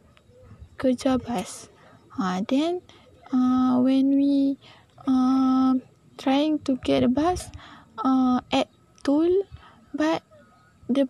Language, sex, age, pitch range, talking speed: English, female, 10-29, 245-270 Hz, 95 wpm